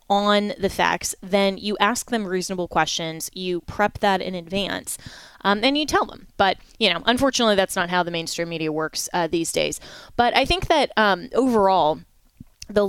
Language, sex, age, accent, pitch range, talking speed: English, female, 20-39, American, 175-210 Hz, 185 wpm